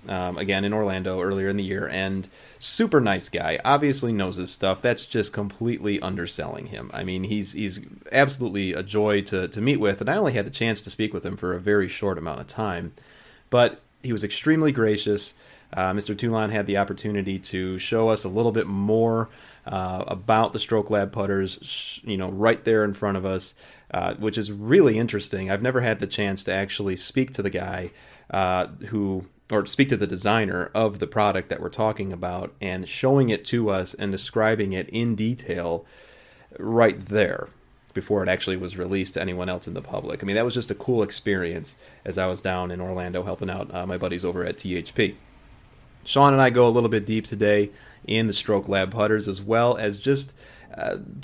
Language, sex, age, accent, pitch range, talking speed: English, male, 30-49, American, 95-115 Hz, 205 wpm